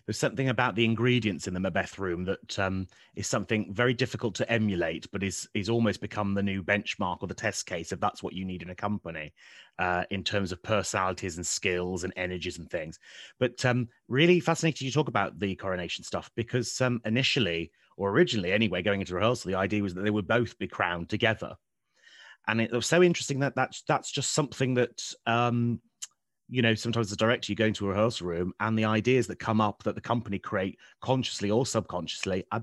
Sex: male